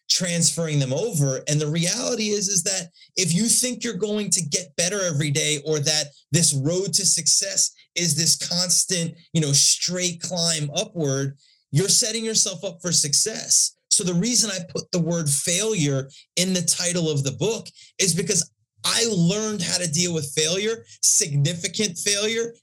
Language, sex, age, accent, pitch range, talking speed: English, male, 30-49, American, 155-190 Hz, 170 wpm